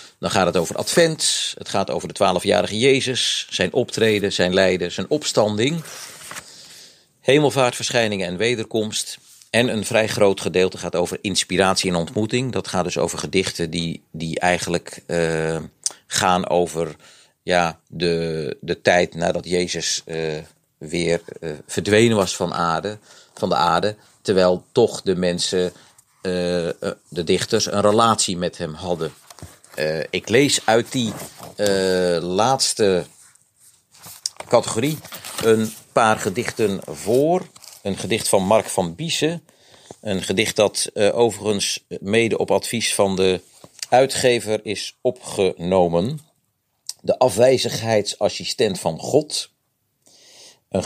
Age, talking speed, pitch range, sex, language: 40-59, 125 wpm, 90-115 Hz, male, Dutch